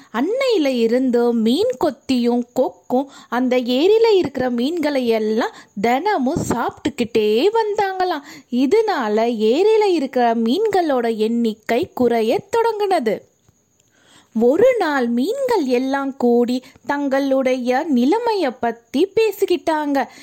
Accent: native